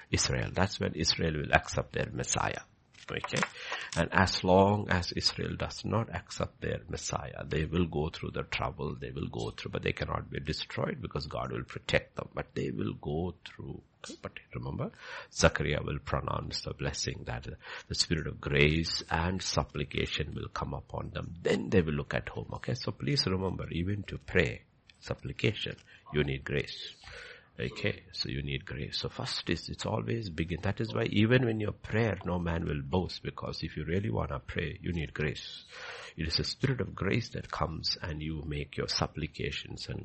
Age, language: 60-79, English